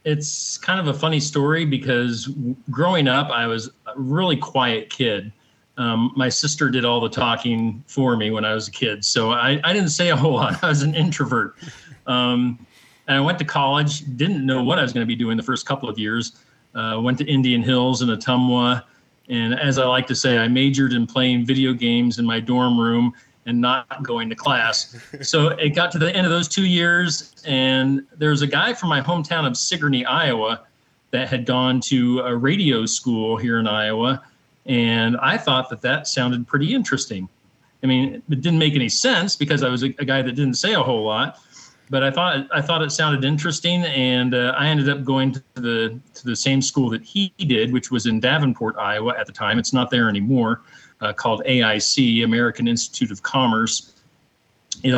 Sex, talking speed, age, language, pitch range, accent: male, 205 wpm, 40-59, English, 120-145 Hz, American